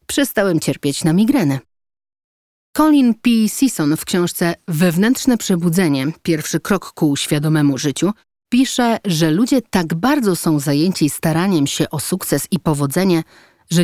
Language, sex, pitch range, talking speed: Polish, female, 145-195 Hz, 130 wpm